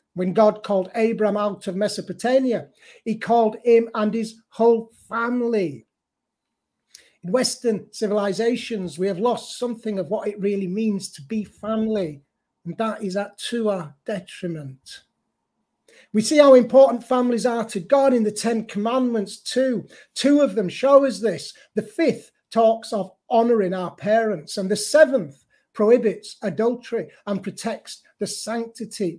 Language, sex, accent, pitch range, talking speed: English, male, British, 190-230 Hz, 145 wpm